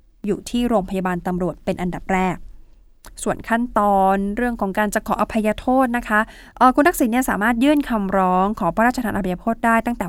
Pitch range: 185-230 Hz